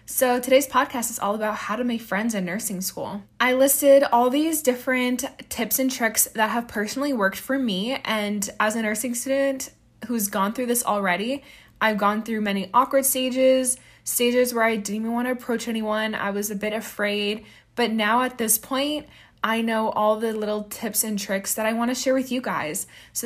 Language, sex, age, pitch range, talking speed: English, female, 20-39, 205-260 Hz, 205 wpm